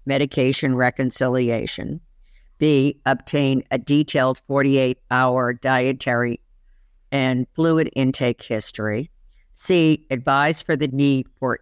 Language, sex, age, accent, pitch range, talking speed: English, female, 50-69, American, 120-150 Hz, 95 wpm